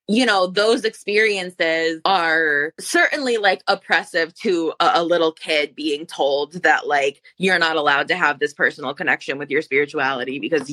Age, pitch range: 20-39, 155-220 Hz